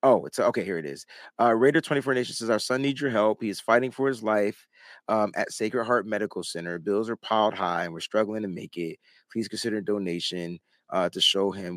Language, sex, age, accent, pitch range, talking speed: English, male, 30-49, American, 105-145 Hz, 230 wpm